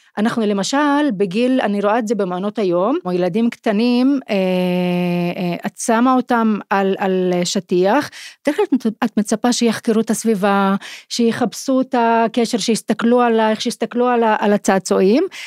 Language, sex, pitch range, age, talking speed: Hebrew, female, 195-255 Hz, 30-49, 135 wpm